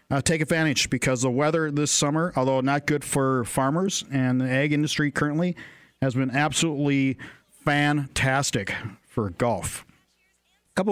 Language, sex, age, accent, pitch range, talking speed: English, male, 50-69, American, 125-155 Hz, 145 wpm